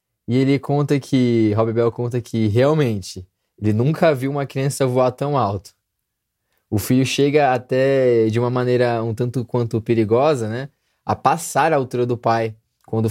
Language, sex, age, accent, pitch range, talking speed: Portuguese, male, 20-39, Brazilian, 110-140 Hz, 165 wpm